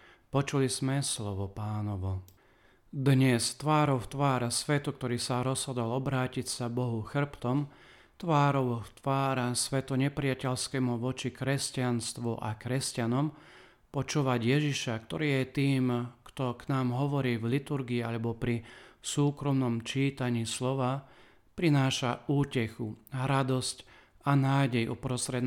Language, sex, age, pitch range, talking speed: Slovak, male, 40-59, 120-135 Hz, 105 wpm